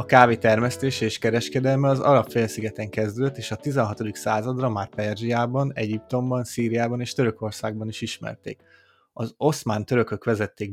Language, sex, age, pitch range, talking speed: Hungarian, male, 20-39, 110-125 Hz, 135 wpm